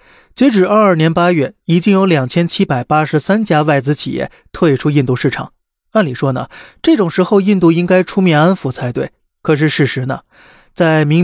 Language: Chinese